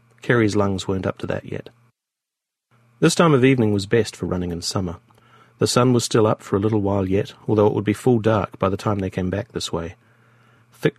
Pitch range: 100-120 Hz